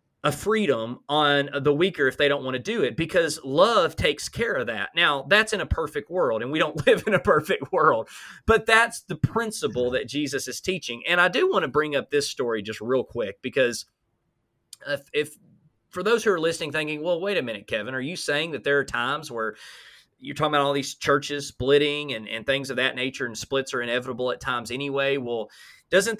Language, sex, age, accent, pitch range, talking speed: English, male, 30-49, American, 130-180 Hz, 220 wpm